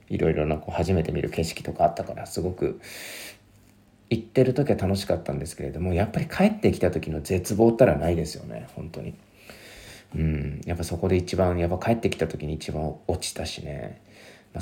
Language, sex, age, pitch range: Japanese, male, 40-59, 85-105 Hz